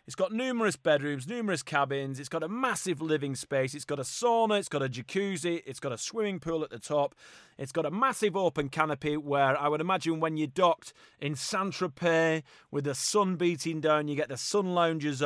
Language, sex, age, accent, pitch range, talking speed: English, male, 30-49, British, 145-195 Hz, 210 wpm